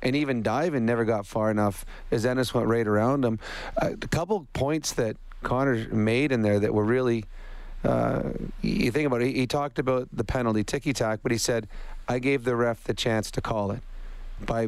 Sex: male